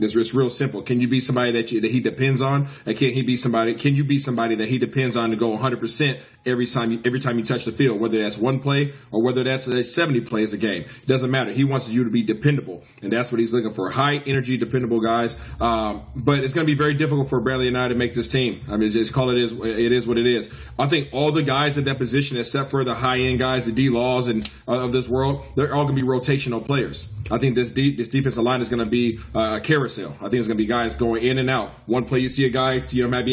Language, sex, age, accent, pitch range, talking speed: English, male, 30-49, American, 115-135 Hz, 285 wpm